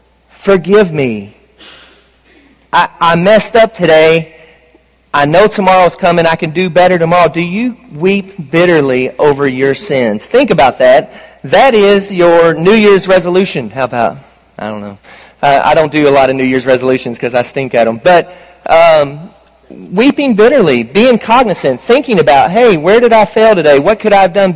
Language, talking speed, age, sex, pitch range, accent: English, 175 wpm, 40-59, male, 150-205 Hz, American